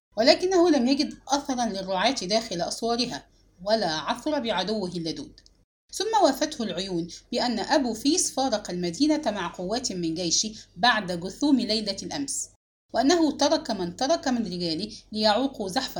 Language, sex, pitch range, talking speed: English, female, 190-285 Hz, 130 wpm